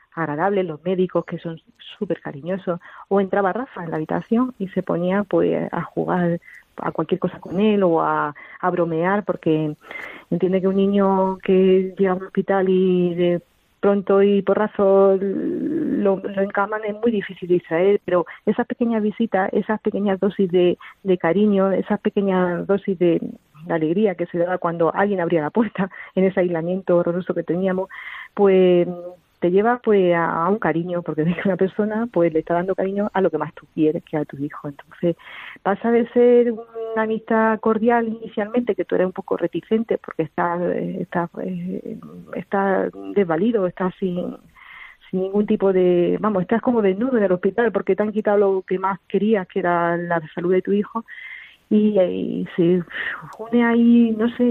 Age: 40-59